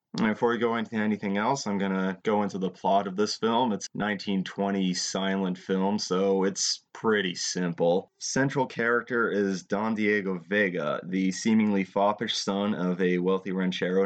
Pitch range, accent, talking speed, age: 95-105 Hz, American, 165 wpm, 30-49